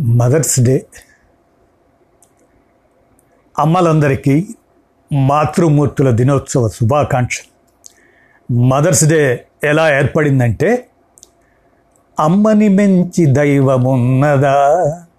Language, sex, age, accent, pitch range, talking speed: Telugu, male, 60-79, native, 130-160 Hz, 50 wpm